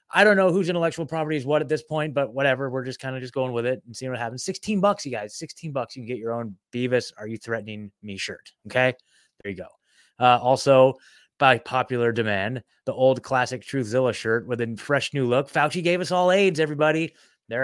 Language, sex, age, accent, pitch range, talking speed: English, male, 20-39, American, 120-150 Hz, 230 wpm